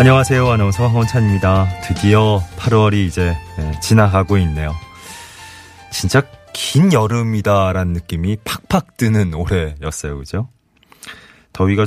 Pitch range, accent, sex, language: 85-120 Hz, native, male, Korean